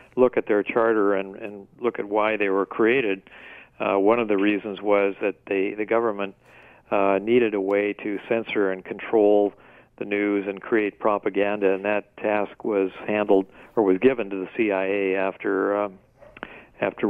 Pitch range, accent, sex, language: 95-105 Hz, American, male, English